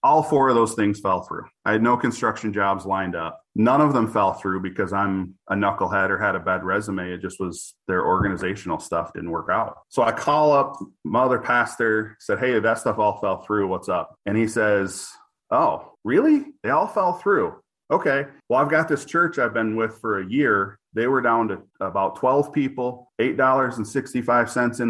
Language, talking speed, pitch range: English, 200 wpm, 100-125 Hz